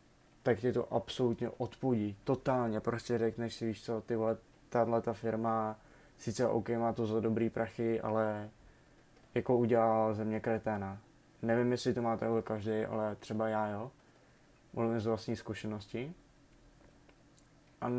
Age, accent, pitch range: 20-39, native, 115-125 Hz